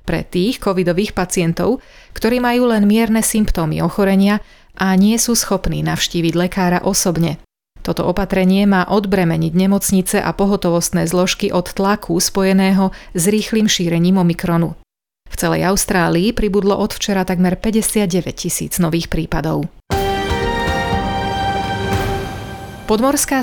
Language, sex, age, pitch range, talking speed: Slovak, female, 30-49, 175-205 Hz, 115 wpm